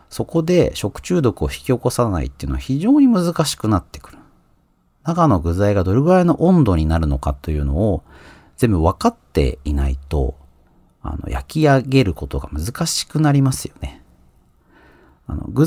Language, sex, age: Japanese, male, 40-59